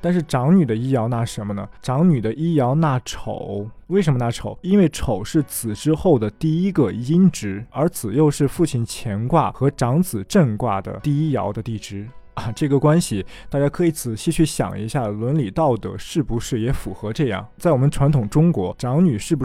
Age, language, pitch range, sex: 20-39, Chinese, 115-160 Hz, male